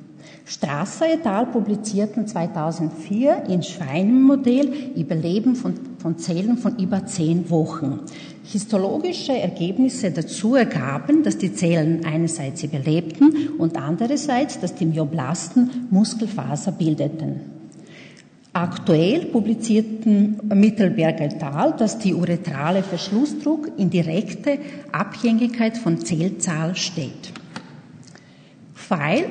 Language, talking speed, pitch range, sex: German, 95 wpm, 170-245 Hz, female